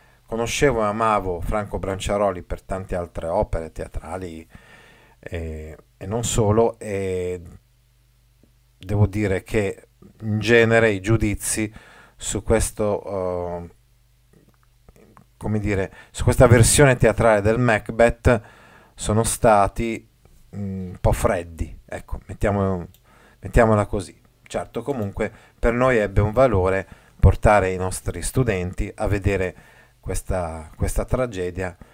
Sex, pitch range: male, 90-115 Hz